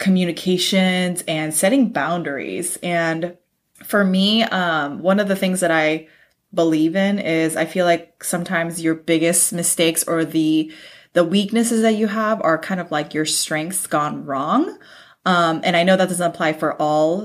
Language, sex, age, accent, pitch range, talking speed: English, female, 20-39, American, 160-195 Hz, 165 wpm